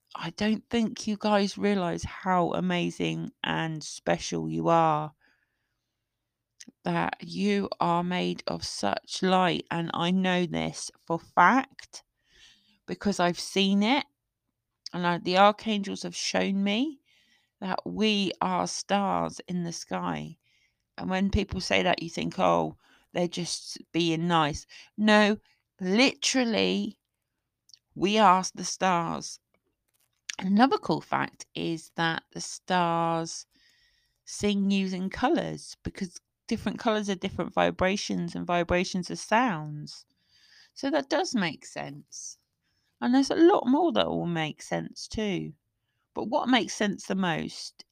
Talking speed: 125 wpm